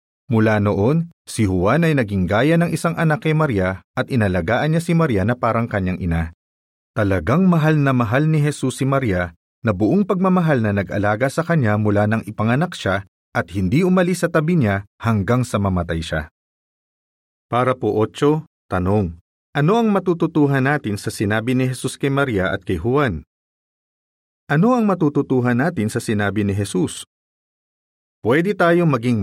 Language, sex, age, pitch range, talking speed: Filipino, male, 40-59, 100-150 Hz, 160 wpm